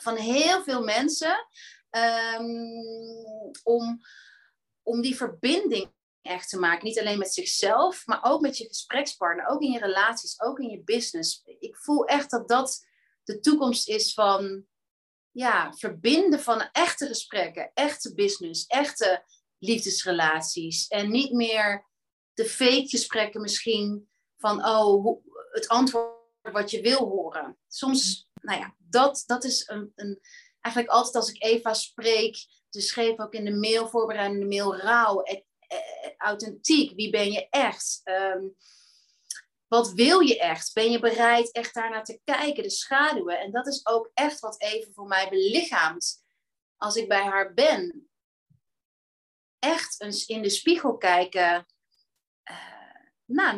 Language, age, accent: Dutch, 30-49, Dutch